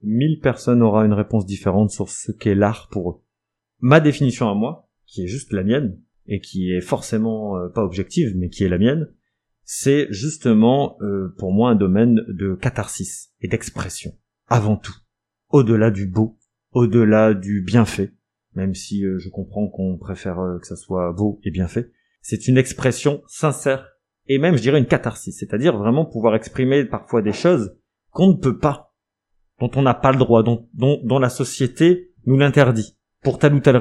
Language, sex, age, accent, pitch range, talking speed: French, male, 30-49, French, 105-135 Hz, 185 wpm